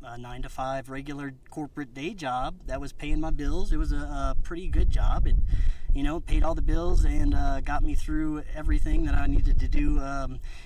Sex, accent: male, American